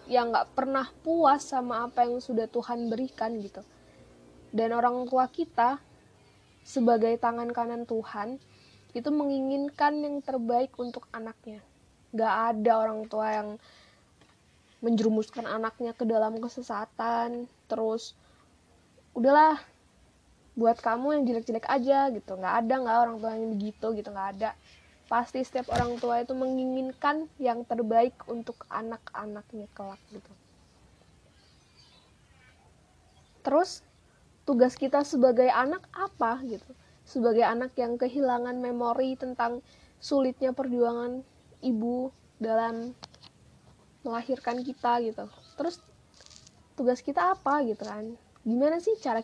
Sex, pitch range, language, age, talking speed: female, 230-260 Hz, Indonesian, 10-29, 115 wpm